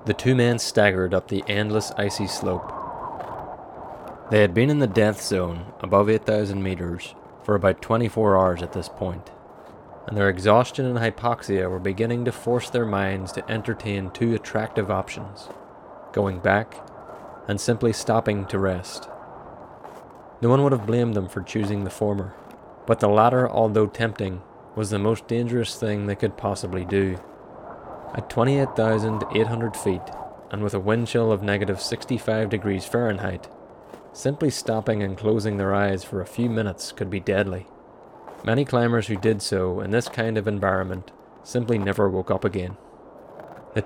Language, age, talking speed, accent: English, 20-39, 155 wpm, American